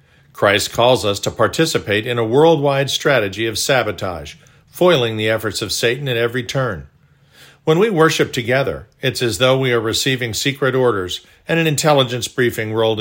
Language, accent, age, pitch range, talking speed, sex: English, American, 50-69, 110-140 Hz, 165 wpm, male